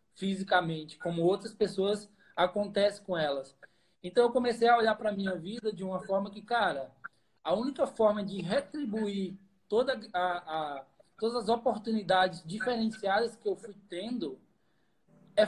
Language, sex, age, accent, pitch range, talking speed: Portuguese, male, 20-39, Brazilian, 180-220 Hz, 145 wpm